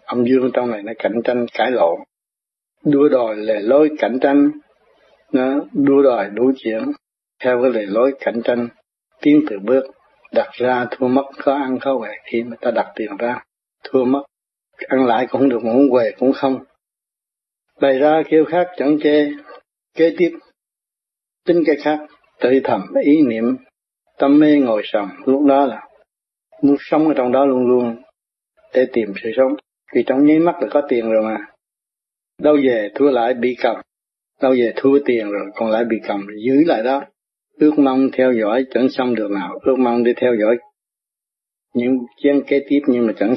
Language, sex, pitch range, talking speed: Vietnamese, male, 120-145 Hz, 185 wpm